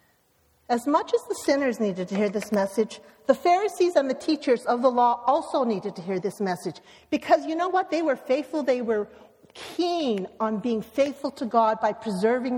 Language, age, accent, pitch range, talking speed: English, 50-69, American, 220-280 Hz, 195 wpm